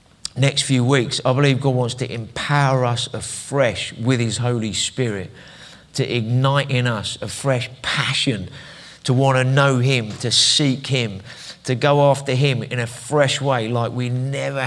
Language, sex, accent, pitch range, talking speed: English, male, British, 120-140 Hz, 170 wpm